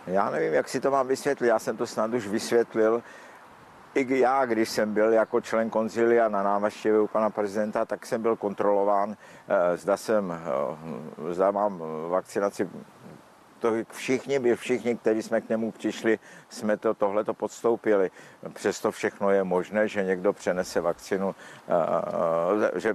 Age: 60-79